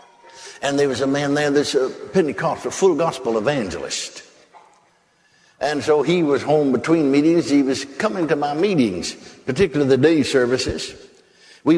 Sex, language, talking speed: male, English, 155 wpm